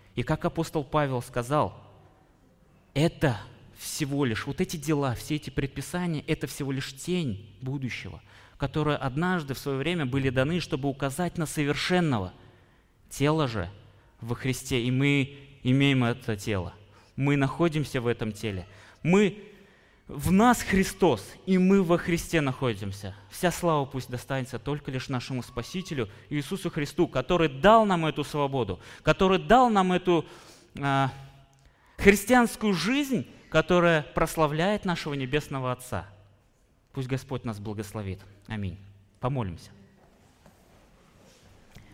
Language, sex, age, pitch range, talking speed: Russian, male, 20-39, 120-170 Hz, 120 wpm